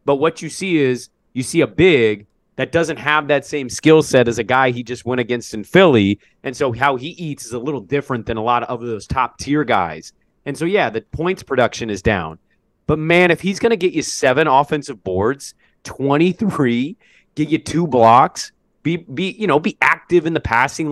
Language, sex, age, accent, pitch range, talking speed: English, male, 30-49, American, 120-155 Hz, 220 wpm